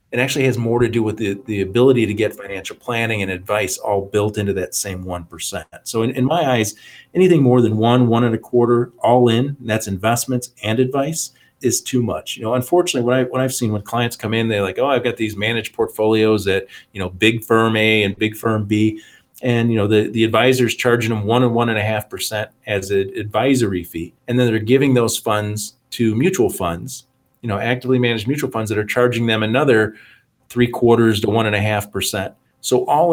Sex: male